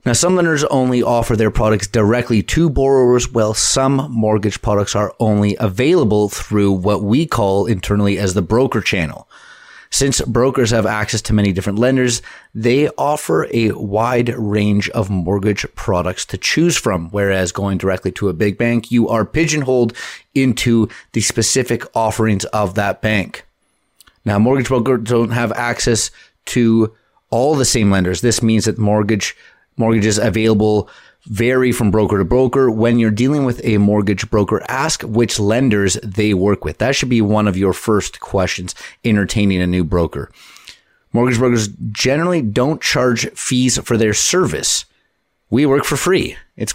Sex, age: male, 30-49